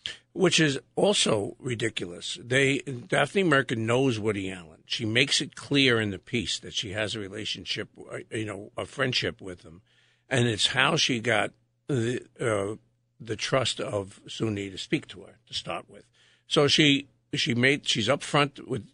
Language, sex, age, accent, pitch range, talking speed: English, male, 60-79, American, 110-135 Hz, 170 wpm